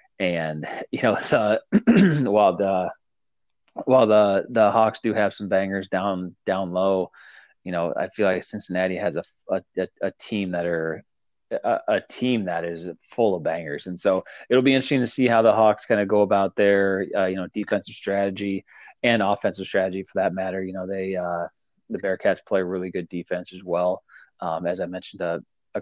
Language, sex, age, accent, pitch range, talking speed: English, male, 20-39, American, 90-105 Hz, 190 wpm